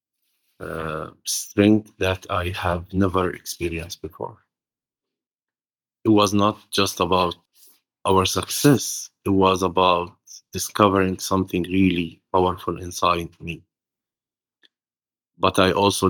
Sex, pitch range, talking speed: male, 85-95 Hz, 100 wpm